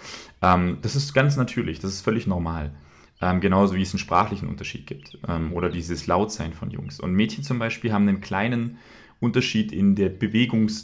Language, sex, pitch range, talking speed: German, male, 90-115 Hz, 170 wpm